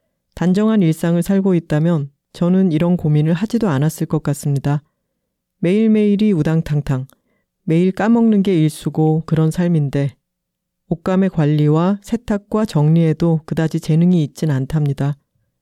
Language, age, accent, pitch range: Korean, 40-59, native, 150-195 Hz